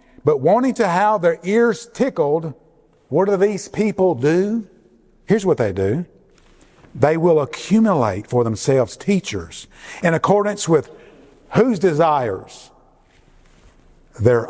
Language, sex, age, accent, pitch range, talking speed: English, male, 50-69, American, 120-185 Hz, 115 wpm